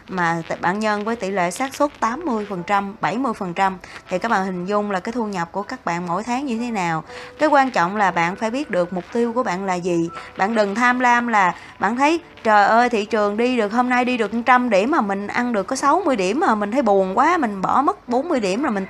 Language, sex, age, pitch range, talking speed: Vietnamese, female, 20-39, 185-250 Hz, 250 wpm